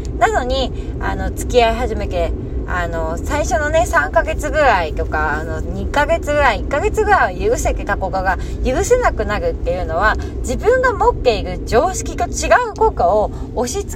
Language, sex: Japanese, female